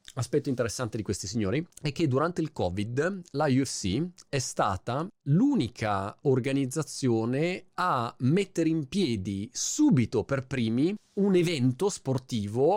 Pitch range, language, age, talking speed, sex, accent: 120-175 Hz, Italian, 30-49, 120 wpm, male, native